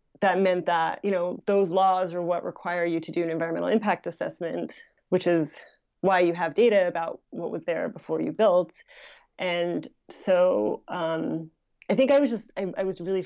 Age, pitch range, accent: 30-49, 170-190 Hz, American